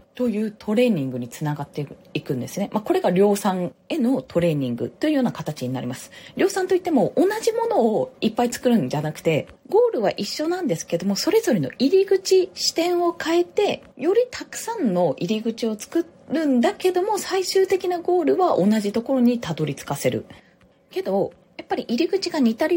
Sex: female